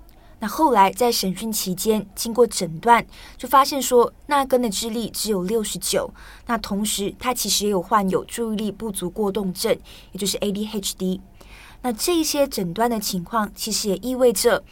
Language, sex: Chinese, female